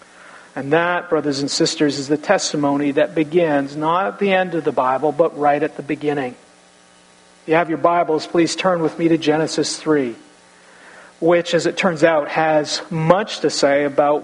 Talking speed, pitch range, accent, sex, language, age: 185 wpm, 150-175 Hz, American, male, English, 50-69